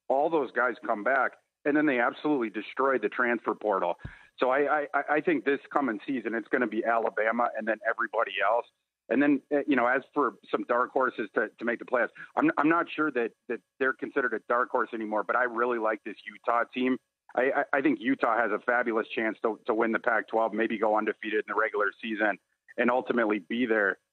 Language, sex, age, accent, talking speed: English, male, 40-59, American, 220 wpm